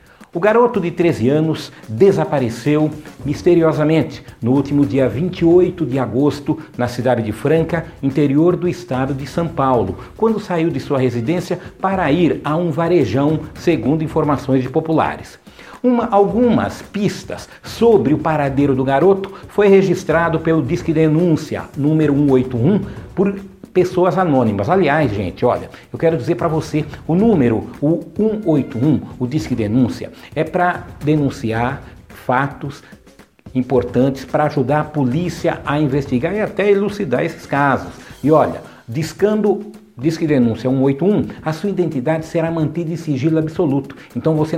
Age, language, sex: 60-79, Portuguese, male